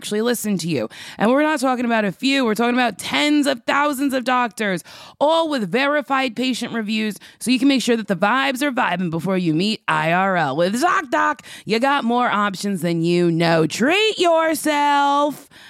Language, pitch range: English, 200-265 Hz